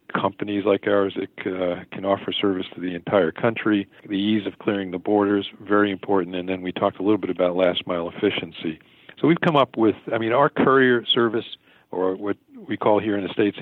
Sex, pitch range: male, 95-110 Hz